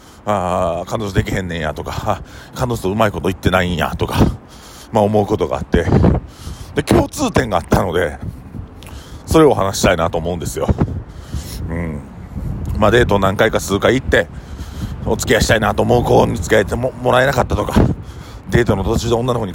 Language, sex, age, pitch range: Japanese, male, 40-59, 95-115 Hz